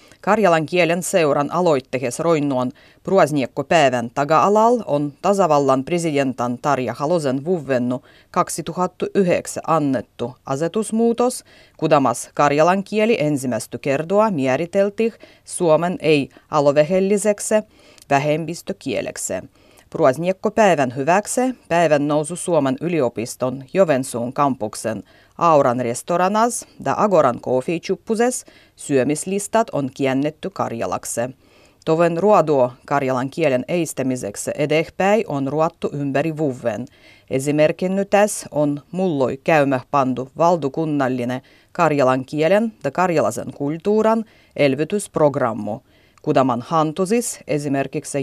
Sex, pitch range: female, 135-185 Hz